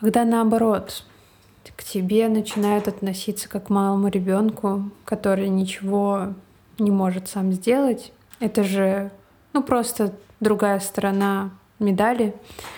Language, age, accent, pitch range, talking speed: Russian, 20-39, native, 190-210 Hz, 110 wpm